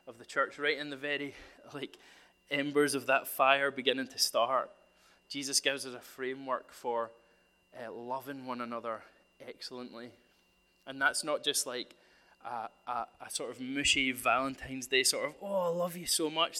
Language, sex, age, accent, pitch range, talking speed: English, male, 20-39, British, 135-165 Hz, 170 wpm